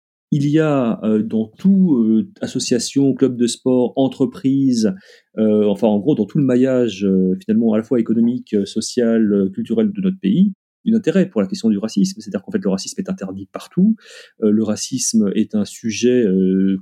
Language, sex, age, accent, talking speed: French, male, 30-49, French, 195 wpm